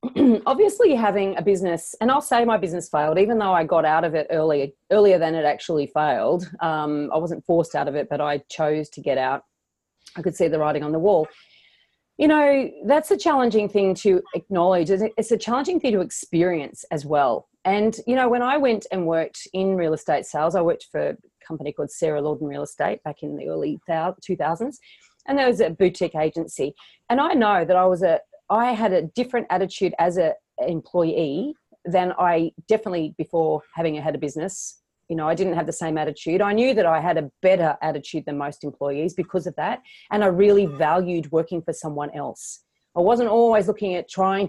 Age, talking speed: 30-49, 205 wpm